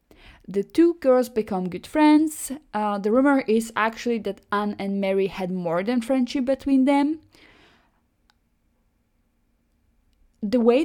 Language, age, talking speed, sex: English, 20-39, 125 wpm, female